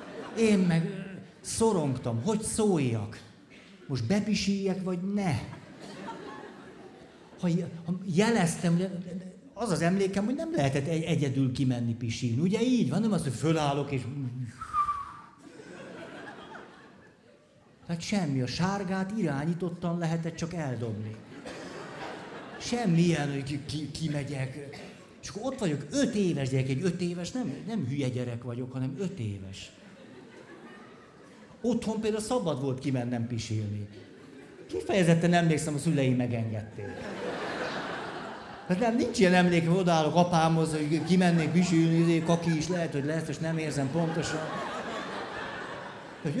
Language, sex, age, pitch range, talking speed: Hungarian, male, 50-69, 140-200 Hz, 120 wpm